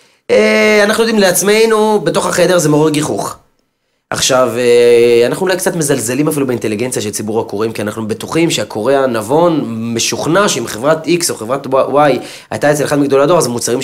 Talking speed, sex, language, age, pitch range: 160 wpm, male, Hebrew, 30-49, 115-170 Hz